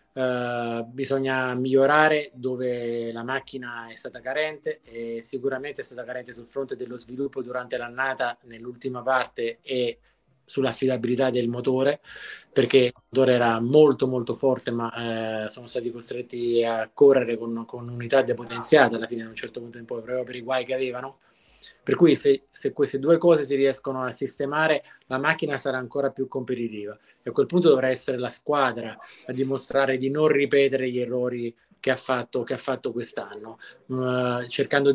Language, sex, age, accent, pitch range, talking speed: Italian, male, 20-39, native, 125-145 Hz, 170 wpm